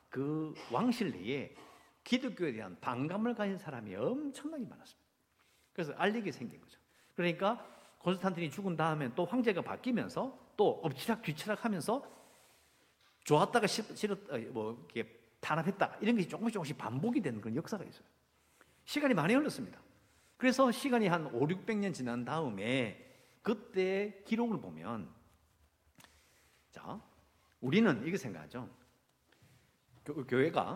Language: English